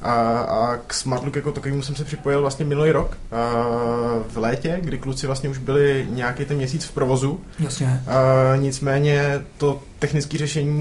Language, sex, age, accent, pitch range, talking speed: Czech, male, 20-39, native, 125-145 Hz, 165 wpm